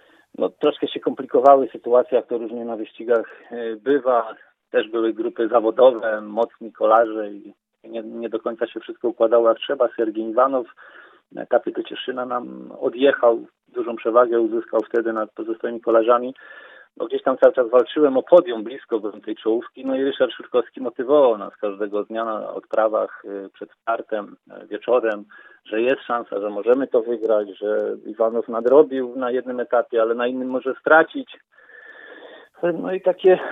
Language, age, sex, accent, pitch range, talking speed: Polish, 40-59, male, native, 115-140 Hz, 155 wpm